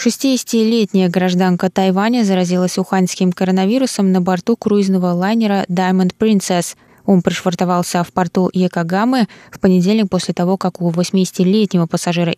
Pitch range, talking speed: 175-205 Hz, 120 wpm